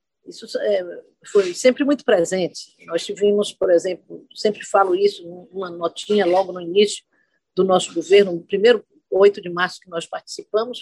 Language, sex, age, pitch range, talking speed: Portuguese, female, 50-69, 185-270 Hz, 155 wpm